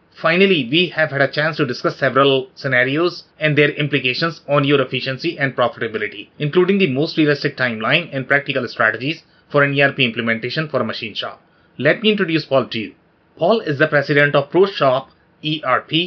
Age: 30-49